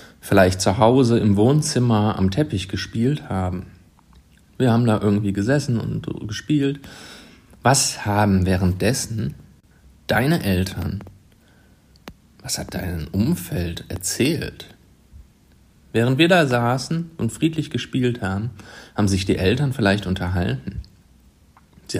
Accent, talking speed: German, 110 wpm